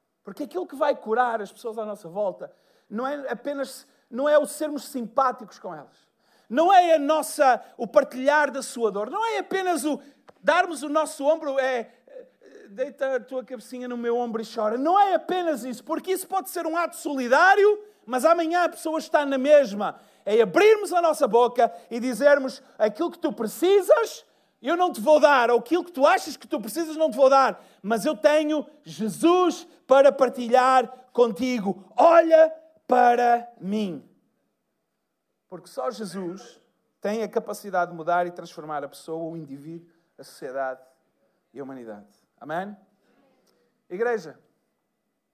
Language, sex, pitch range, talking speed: Portuguese, male, 225-305 Hz, 165 wpm